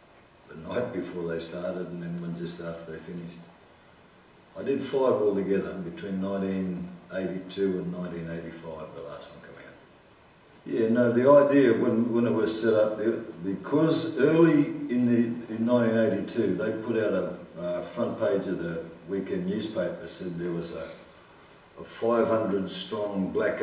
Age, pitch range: 60-79, 85-115 Hz